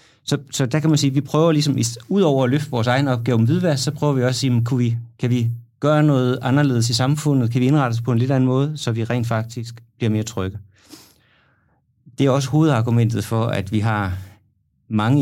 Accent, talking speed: native, 235 wpm